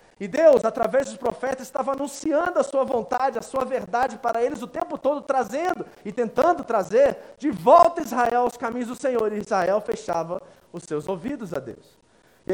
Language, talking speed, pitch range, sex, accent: Portuguese, 185 wpm, 230-290 Hz, male, Brazilian